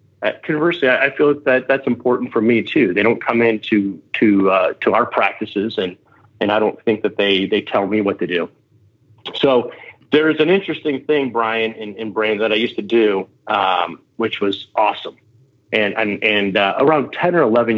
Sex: male